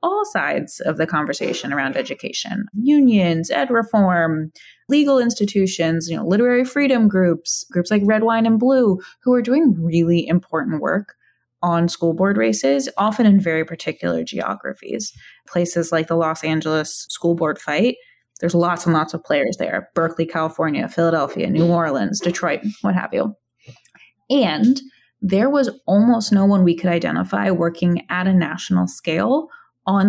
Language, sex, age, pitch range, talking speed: English, female, 20-39, 165-205 Hz, 150 wpm